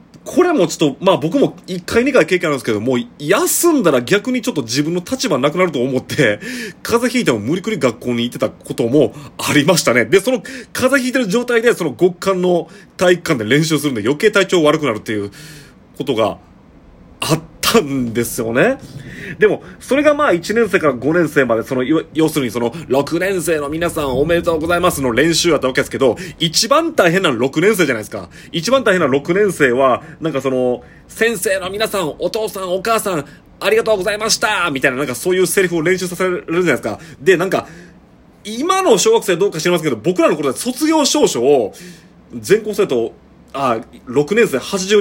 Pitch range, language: 150-225 Hz, Japanese